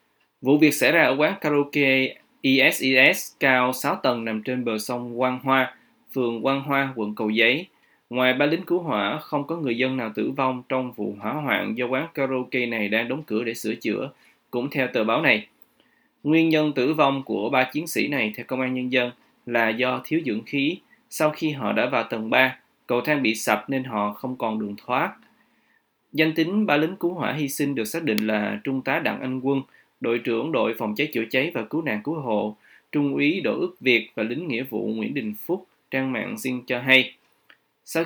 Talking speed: 215 wpm